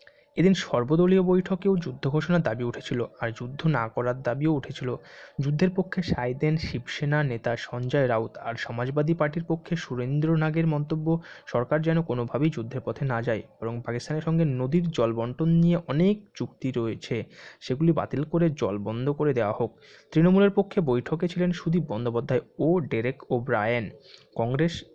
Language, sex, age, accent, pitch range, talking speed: Bengali, male, 20-39, native, 120-185 Hz, 150 wpm